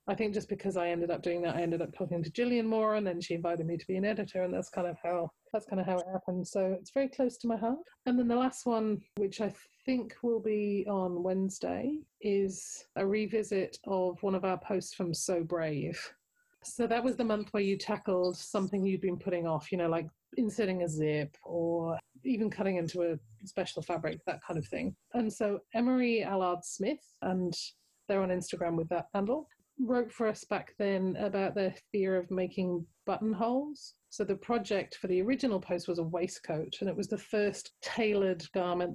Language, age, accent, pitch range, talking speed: English, 30-49, British, 175-220 Hz, 210 wpm